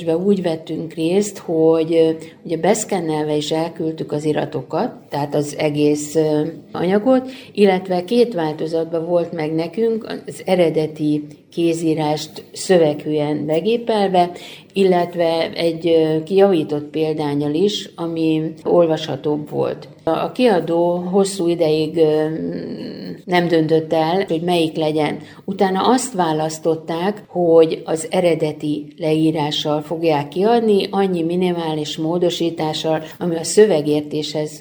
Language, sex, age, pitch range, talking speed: Hungarian, female, 50-69, 155-180 Hz, 100 wpm